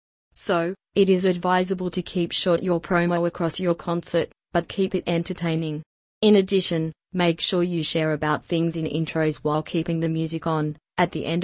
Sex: female